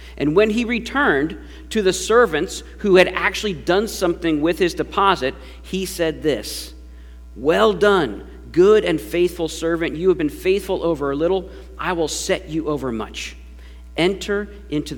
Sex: male